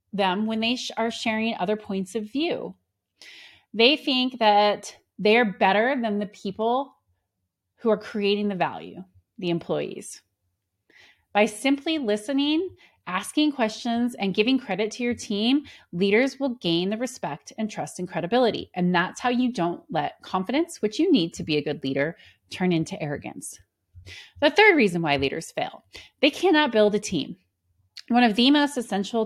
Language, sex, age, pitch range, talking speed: English, female, 30-49, 175-230 Hz, 160 wpm